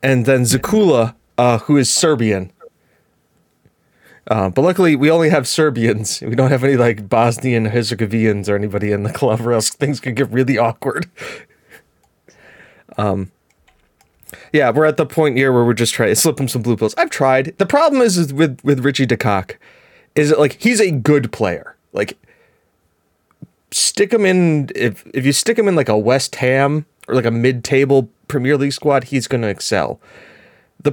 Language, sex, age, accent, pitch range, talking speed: English, male, 30-49, American, 115-155 Hz, 180 wpm